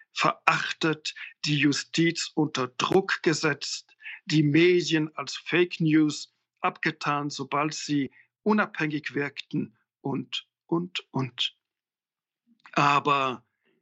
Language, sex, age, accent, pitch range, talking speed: German, male, 60-79, German, 140-175 Hz, 85 wpm